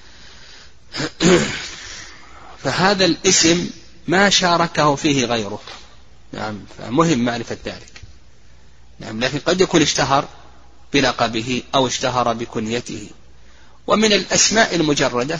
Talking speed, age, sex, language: 85 wpm, 30-49, male, Arabic